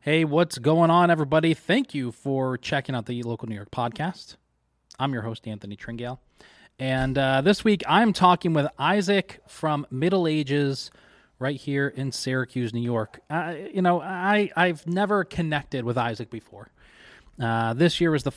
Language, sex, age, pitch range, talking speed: English, male, 20-39, 120-150 Hz, 170 wpm